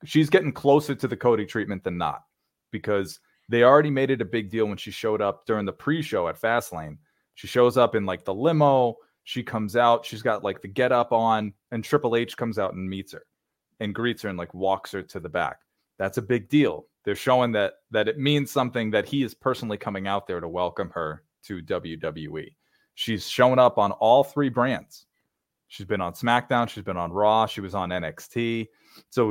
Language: English